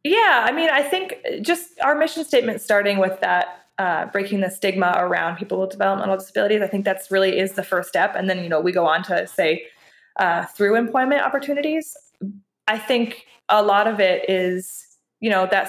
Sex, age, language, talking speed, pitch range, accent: female, 20-39, English, 200 wpm, 185-220 Hz, American